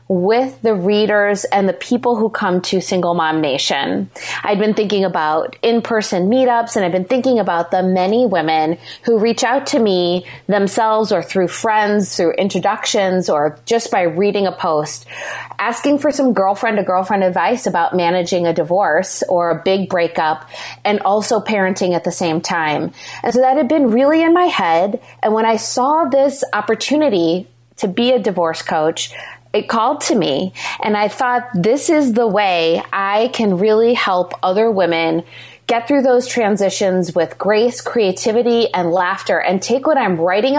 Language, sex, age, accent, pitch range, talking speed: English, female, 20-39, American, 180-235 Hz, 170 wpm